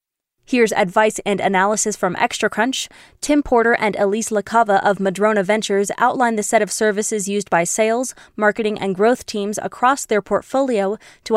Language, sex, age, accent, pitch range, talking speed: English, female, 20-39, American, 205-240 Hz, 160 wpm